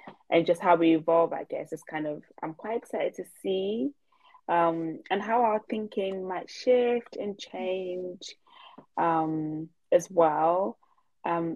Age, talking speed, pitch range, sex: 20-39, 145 wpm, 160-205 Hz, female